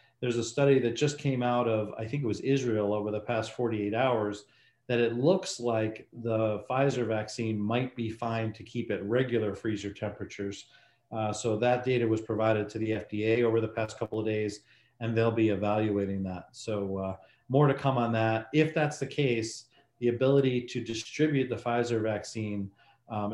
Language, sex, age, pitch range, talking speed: English, male, 40-59, 110-125 Hz, 190 wpm